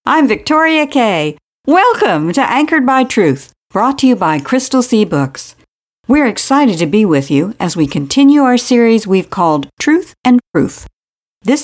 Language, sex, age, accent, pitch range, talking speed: English, female, 60-79, American, 160-245 Hz, 165 wpm